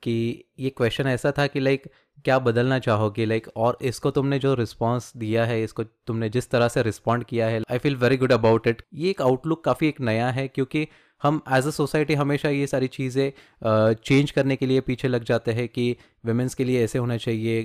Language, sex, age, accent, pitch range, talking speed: Hindi, male, 20-39, native, 110-130 Hz, 225 wpm